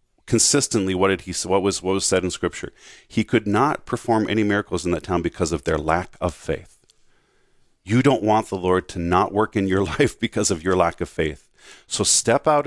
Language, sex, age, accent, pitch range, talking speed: English, male, 40-59, American, 90-115 Hz, 220 wpm